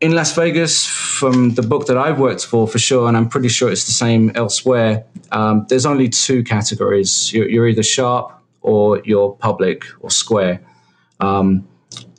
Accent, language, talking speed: British, English, 170 wpm